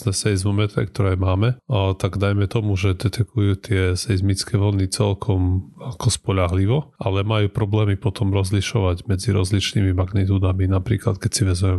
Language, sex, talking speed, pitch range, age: Slovak, male, 145 wpm, 95-110 Hz, 30-49